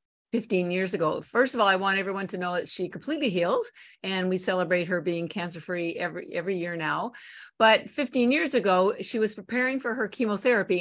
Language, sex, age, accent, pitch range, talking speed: English, female, 50-69, American, 180-240 Hz, 195 wpm